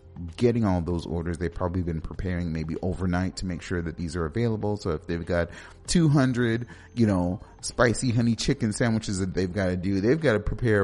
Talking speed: 205 wpm